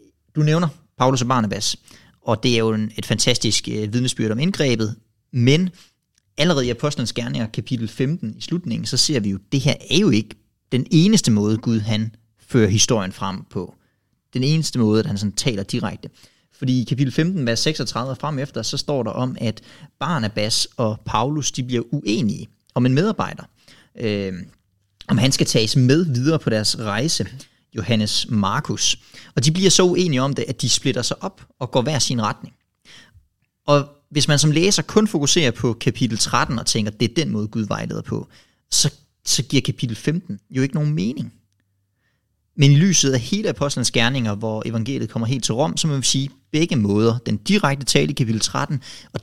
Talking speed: 190 wpm